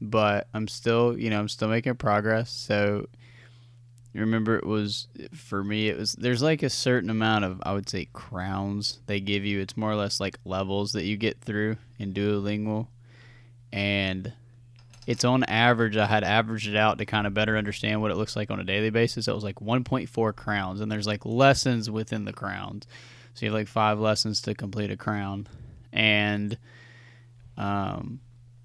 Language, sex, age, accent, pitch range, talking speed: English, male, 10-29, American, 105-120 Hz, 185 wpm